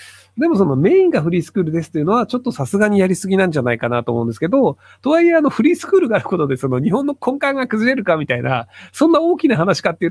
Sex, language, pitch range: male, Japanese, 125-205 Hz